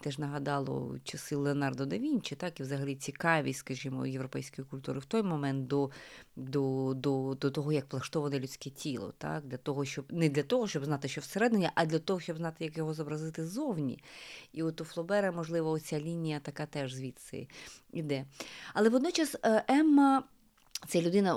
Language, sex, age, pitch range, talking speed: Ukrainian, female, 30-49, 140-190 Hz, 170 wpm